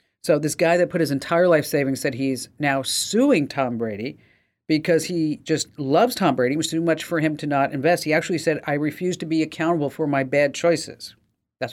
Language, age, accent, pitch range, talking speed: English, 50-69, American, 135-165 Hz, 220 wpm